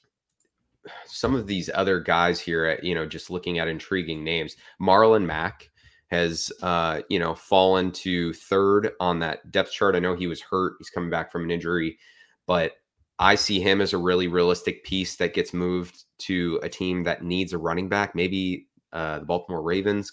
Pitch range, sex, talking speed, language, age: 85-100 Hz, male, 185 wpm, English, 20-39